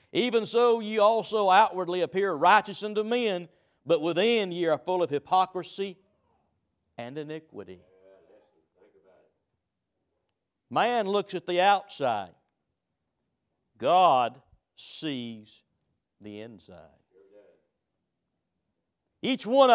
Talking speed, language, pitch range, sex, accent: 90 wpm, English, 140-220 Hz, male, American